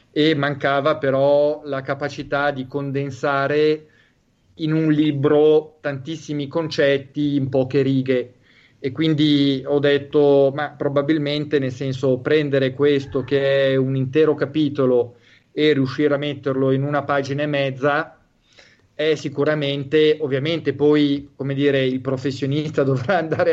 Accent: native